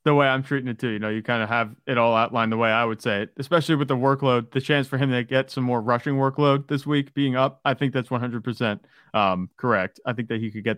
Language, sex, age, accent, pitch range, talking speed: English, male, 30-49, American, 110-140 Hz, 285 wpm